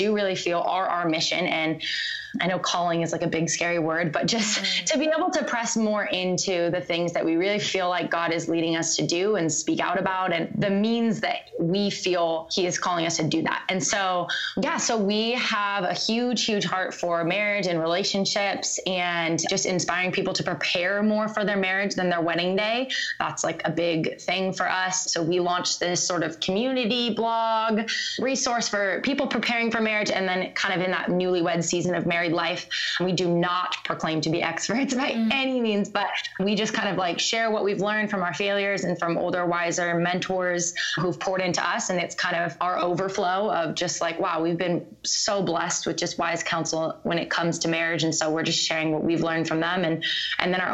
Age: 20-39